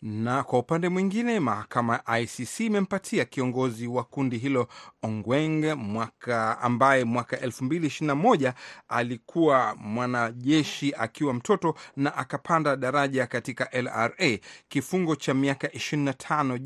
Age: 40-59